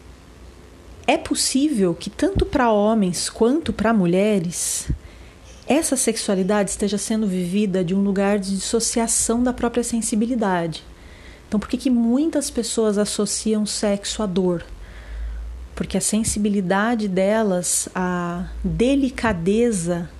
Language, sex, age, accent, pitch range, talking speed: Portuguese, female, 40-59, Brazilian, 180-225 Hz, 115 wpm